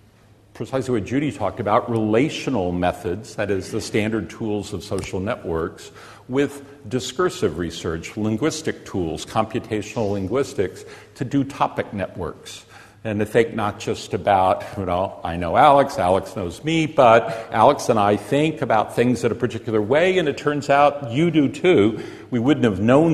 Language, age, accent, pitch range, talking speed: English, 50-69, American, 105-130 Hz, 160 wpm